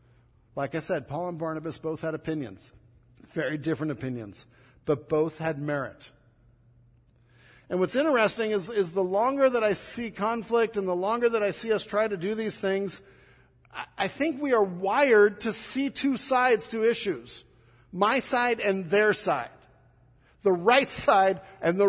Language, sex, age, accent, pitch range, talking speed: English, male, 50-69, American, 145-235 Hz, 165 wpm